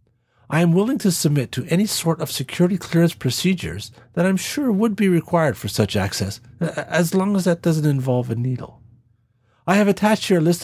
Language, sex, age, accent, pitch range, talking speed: English, male, 50-69, American, 115-160 Hz, 195 wpm